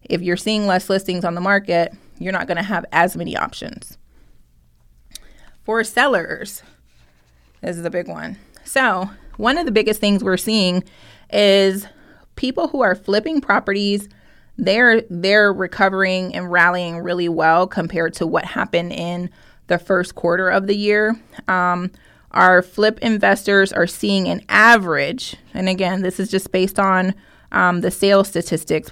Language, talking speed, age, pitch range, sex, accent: English, 150 wpm, 20-39, 175-210 Hz, female, American